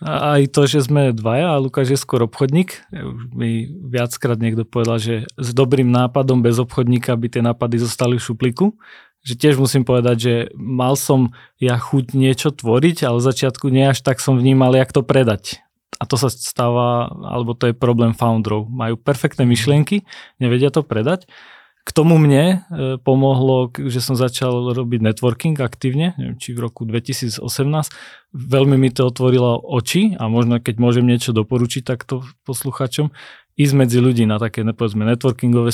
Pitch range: 120-135 Hz